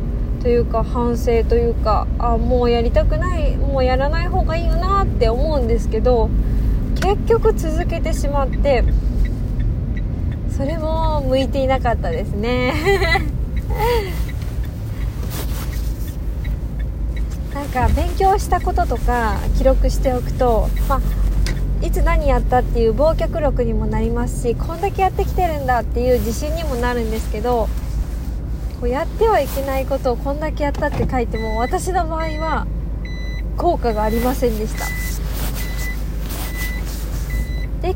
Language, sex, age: Japanese, female, 20-39